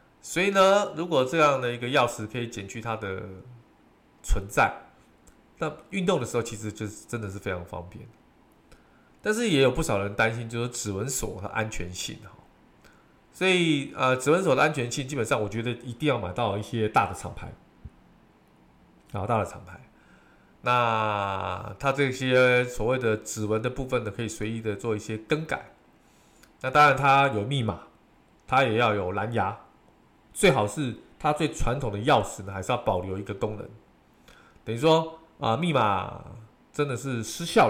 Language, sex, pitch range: Chinese, male, 105-145 Hz